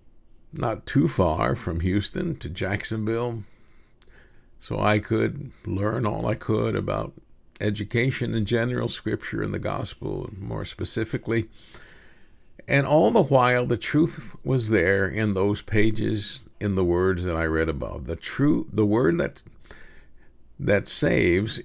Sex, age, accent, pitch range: male, 50-69, American, 90-120 Hz